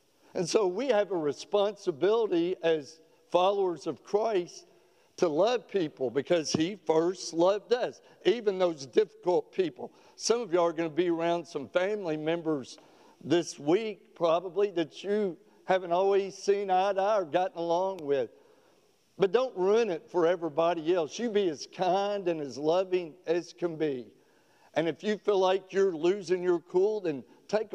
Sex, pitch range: male, 155-205 Hz